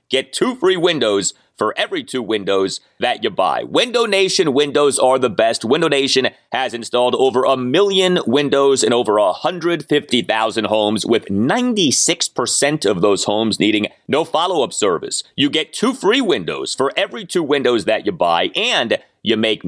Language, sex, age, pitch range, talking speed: English, male, 30-49, 110-145 Hz, 160 wpm